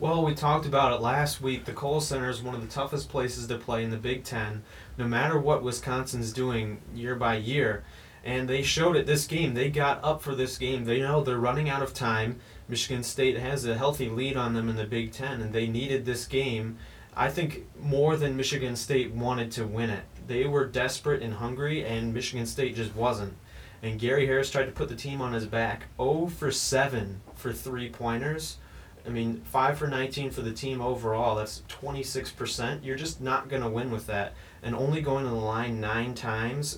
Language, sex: English, male